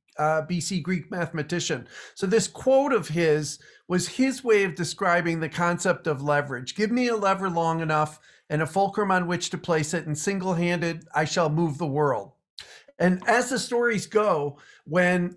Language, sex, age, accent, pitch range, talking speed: English, male, 50-69, American, 160-195 Hz, 175 wpm